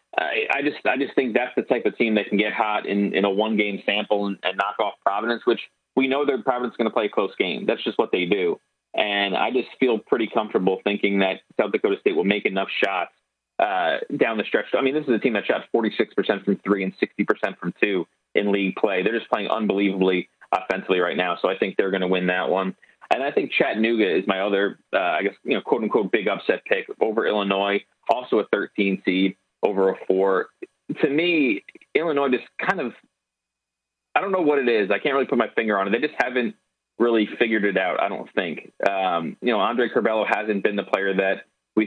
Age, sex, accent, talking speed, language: 30-49, male, American, 230 wpm, English